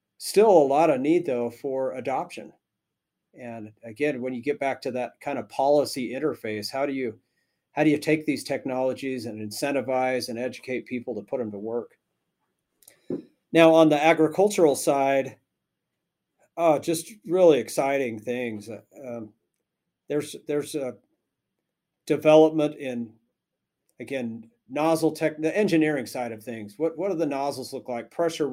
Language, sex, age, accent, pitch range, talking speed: English, male, 40-59, American, 120-150 Hz, 150 wpm